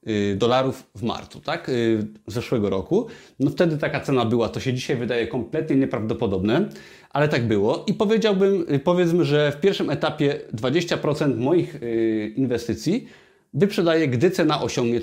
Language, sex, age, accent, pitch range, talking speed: Polish, male, 30-49, native, 120-165 Hz, 135 wpm